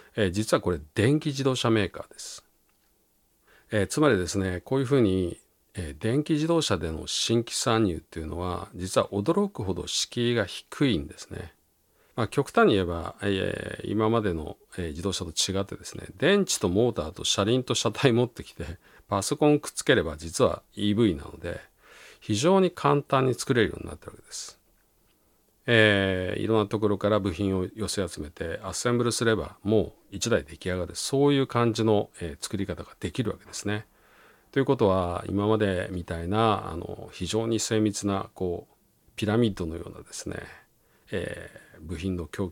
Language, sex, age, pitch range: Japanese, male, 50-69, 90-115 Hz